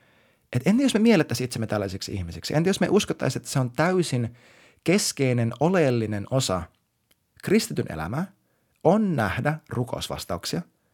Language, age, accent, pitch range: Finnish, 30-49, native, 115-155 Hz